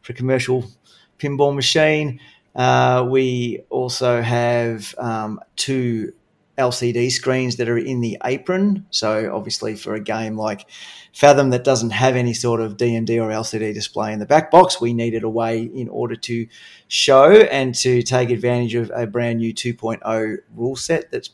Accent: Australian